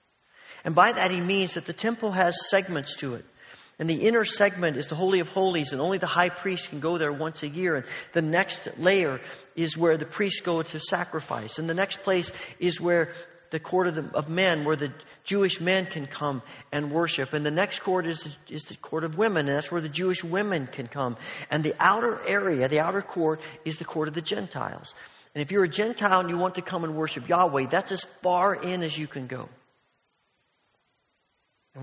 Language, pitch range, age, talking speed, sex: English, 135-180 Hz, 40-59, 215 wpm, male